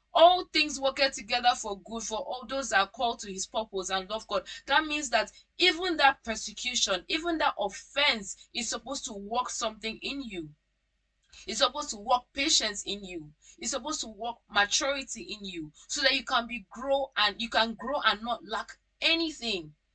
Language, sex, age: English, female, 20-39